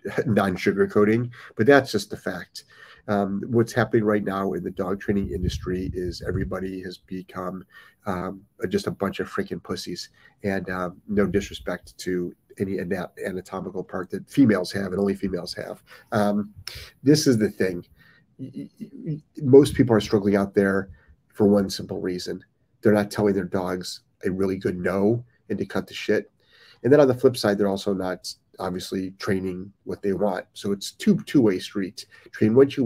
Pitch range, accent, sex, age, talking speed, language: 95-110 Hz, American, male, 40-59, 175 wpm, English